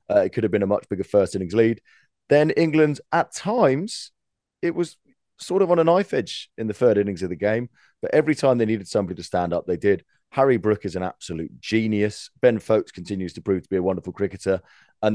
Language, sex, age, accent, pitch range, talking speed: English, male, 30-49, British, 95-120 Hz, 225 wpm